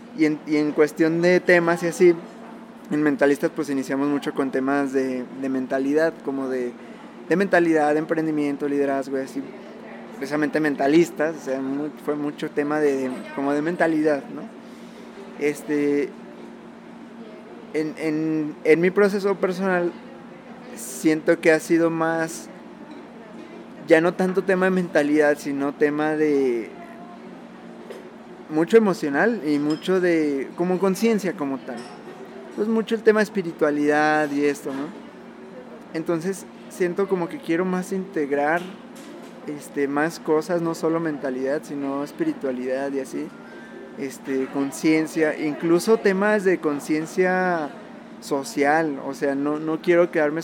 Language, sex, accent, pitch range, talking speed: Spanish, male, Mexican, 145-175 Hz, 130 wpm